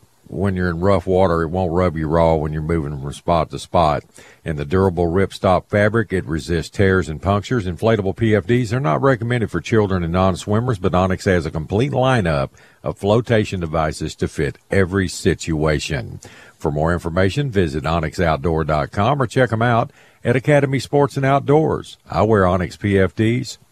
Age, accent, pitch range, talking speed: 50-69, American, 85-115 Hz, 170 wpm